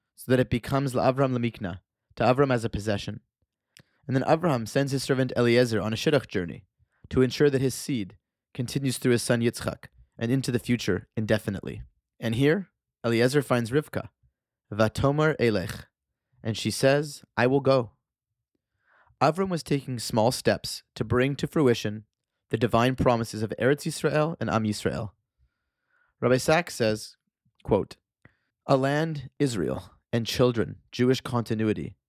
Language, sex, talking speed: English, male, 150 wpm